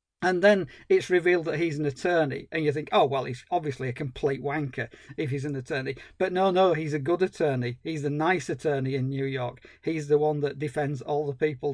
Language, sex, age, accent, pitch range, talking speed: English, male, 40-59, British, 150-195 Hz, 225 wpm